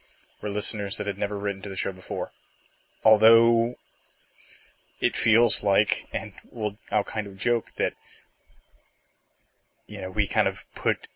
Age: 20-39